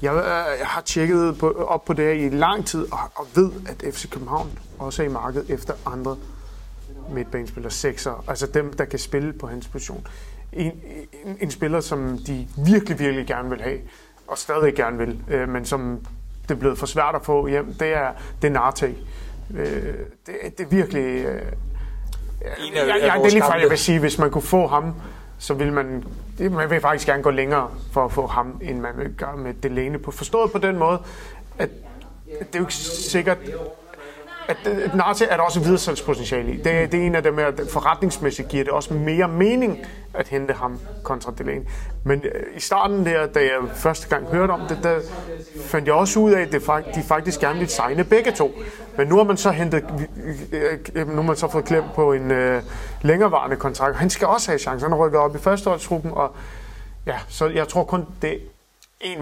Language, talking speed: Danish, 195 wpm